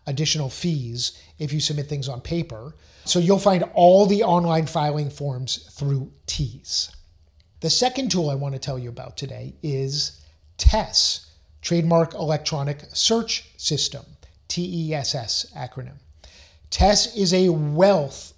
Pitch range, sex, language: 130-170 Hz, male, English